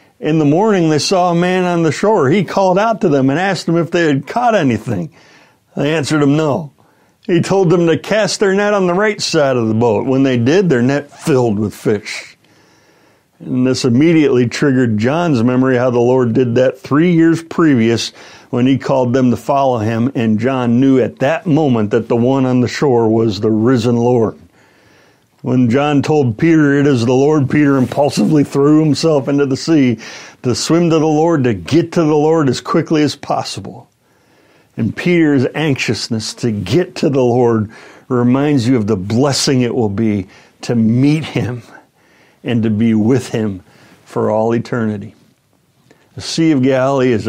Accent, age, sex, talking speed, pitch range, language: American, 60-79, male, 185 wpm, 120-155 Hz, English